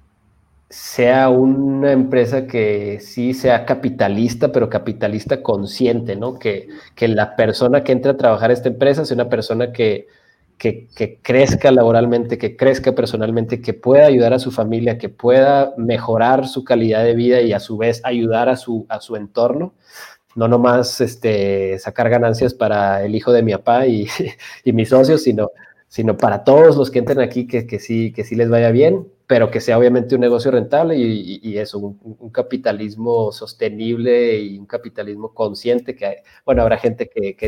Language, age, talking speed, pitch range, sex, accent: Spanish, 30-49, 180 wpm, 105-125 Hz, male, Mexican